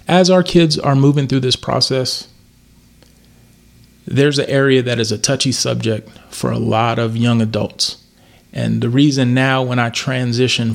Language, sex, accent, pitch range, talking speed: English, male, American, 120-145 Hz, 160 wpm